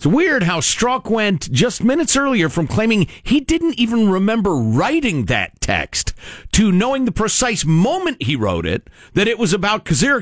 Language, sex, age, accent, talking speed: English, male, 50-69, American, 175 wpm